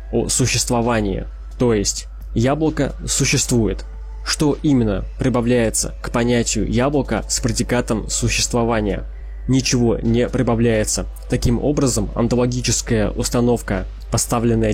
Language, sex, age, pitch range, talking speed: Russian, male, 20-39, 110-125 Hz, 95 wpm